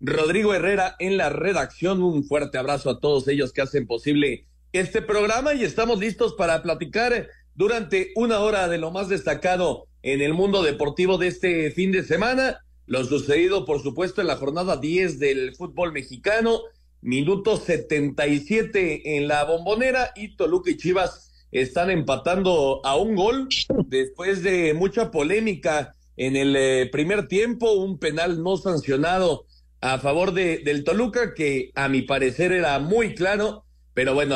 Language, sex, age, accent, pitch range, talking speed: Spanish, male, 40-59, Mexican, 140-195 Hz, 155 wpm